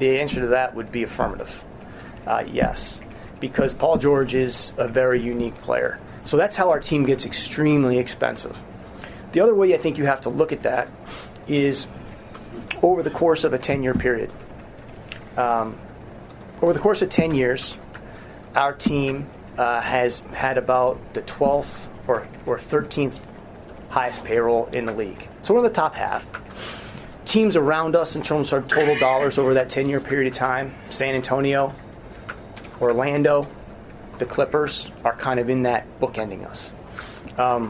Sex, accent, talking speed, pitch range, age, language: male, American, 160 wpm, 120-145 Hz, 30-49, English